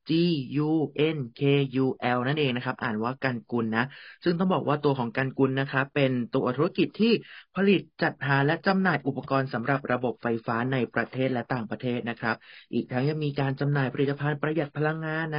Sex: male